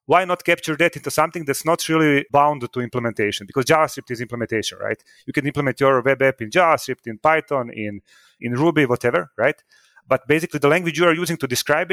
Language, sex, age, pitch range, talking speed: English, male, 30-49, 130-160 Hz, 205 wpm